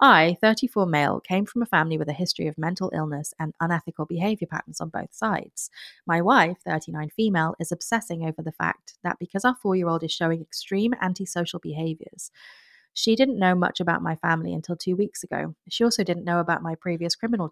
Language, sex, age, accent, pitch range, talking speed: English, female, 30-49, British, 160-195 Hz, 195 wpm